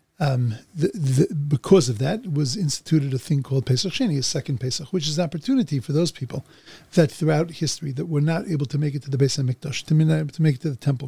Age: 40-59